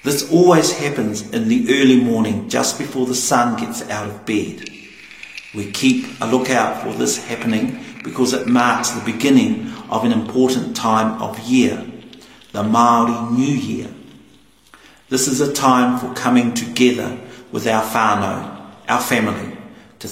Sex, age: male, 50-69